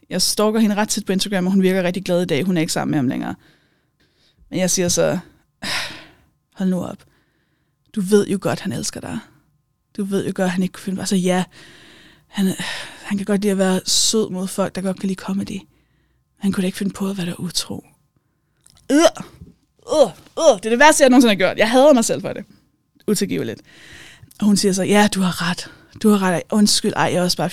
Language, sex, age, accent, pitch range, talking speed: Danish, female, 20-39, native, 185-225 Hz, 230 wpm